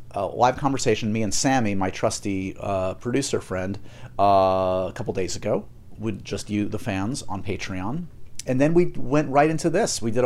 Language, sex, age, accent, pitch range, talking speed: English, male, 40-59, American, 105-130 Hz, 185 wpm